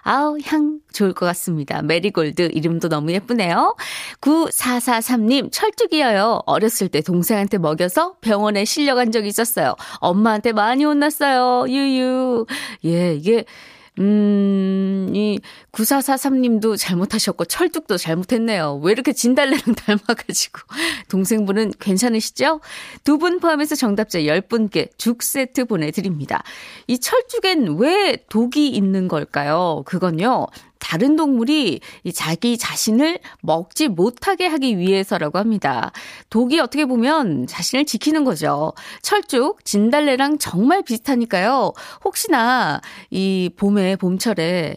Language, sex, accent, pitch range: Korean, female, native, 195-295 Hz